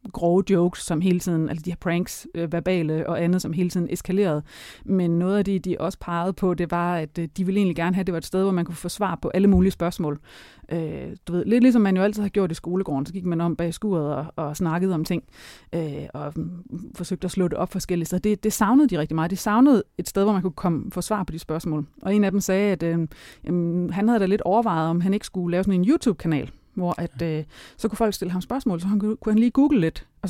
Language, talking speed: Danish, 265 wpm